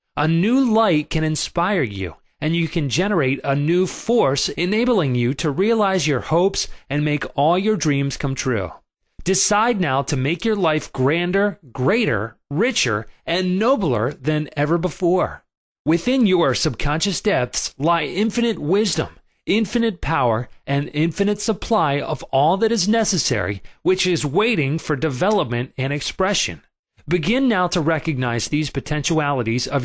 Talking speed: 145 wpm